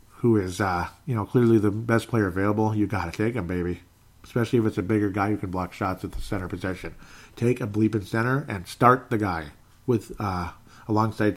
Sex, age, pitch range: male, 40-59, 100-115 Hz